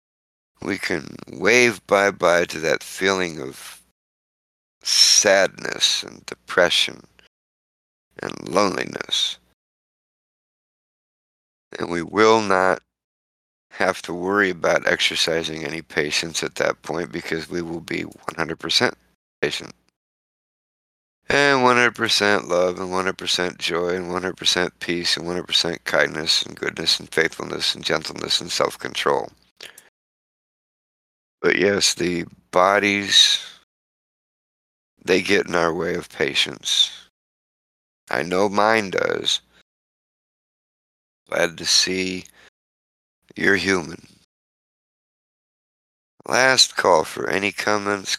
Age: 50-69